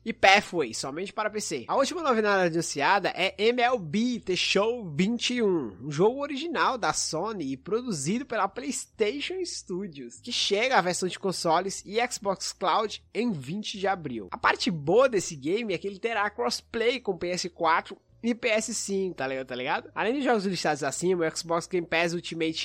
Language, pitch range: English, 170-225 Hz